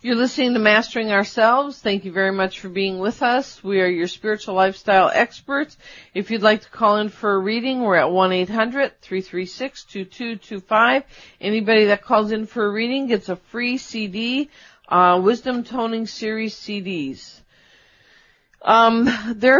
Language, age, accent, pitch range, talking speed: English, 50-69, American, 175-220 Hz, 150 wpm